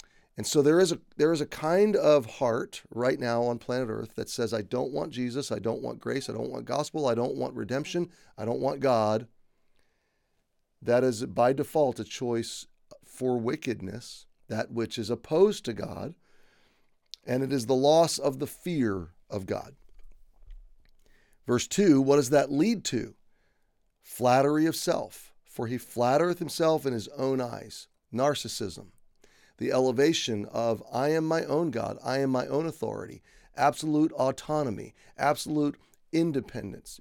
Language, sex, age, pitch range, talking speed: English, male, 40-59, 120-150 Hz, 160 wpm